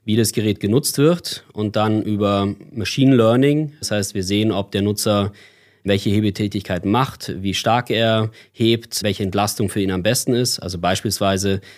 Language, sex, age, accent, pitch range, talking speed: German, male, 20-39, German, 100-115 Hz, 170 wpm